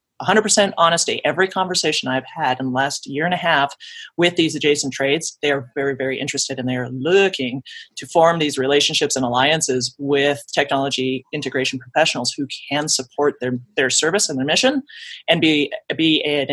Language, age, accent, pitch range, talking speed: English, 30-49, American, 135-165 Hz, 180 wpm